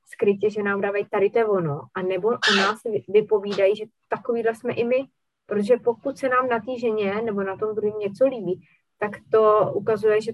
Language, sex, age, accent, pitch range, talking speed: Czech, female, 20-39, native, 185-210 Hz, 190 wpm